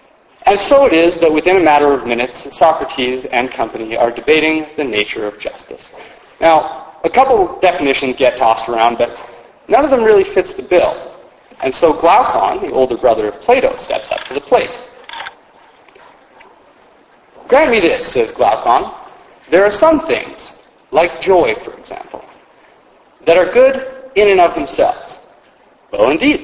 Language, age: English, 40-59